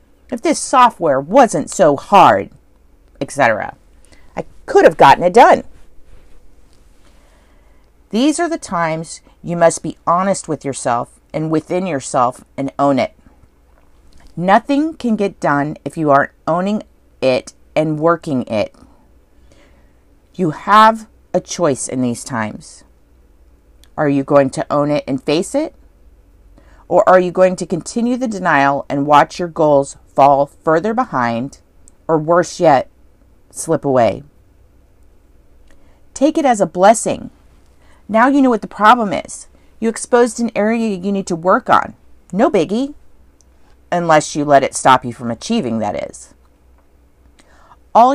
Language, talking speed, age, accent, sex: English, 140 wpm, 40-59, American, female